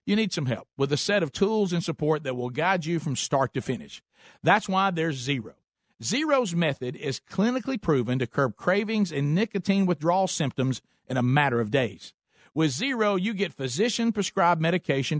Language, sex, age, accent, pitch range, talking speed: English, male, 50-69, American, 140-205 Hz, 180 wpm